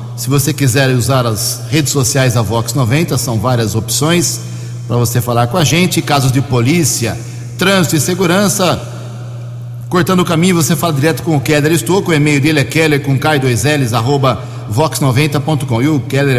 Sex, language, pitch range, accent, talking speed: male, Portuguese, 120-155 Hz, Brazilian, 175 wpm